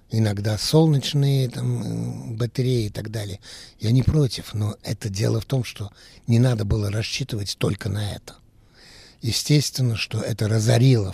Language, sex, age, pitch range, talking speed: Russian, male, 60-79, 105-130 Hz, 145 wpm